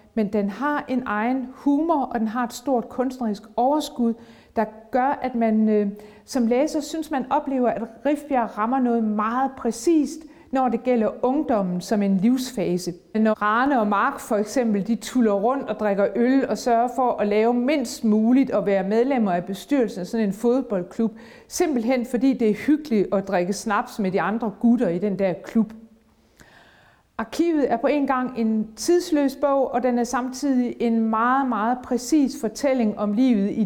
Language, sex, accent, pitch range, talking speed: Danish, female, native, 215-265 Hz, 175 wpm